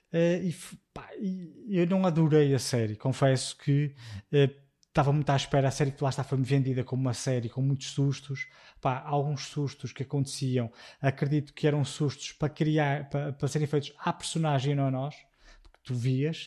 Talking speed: 190 wpm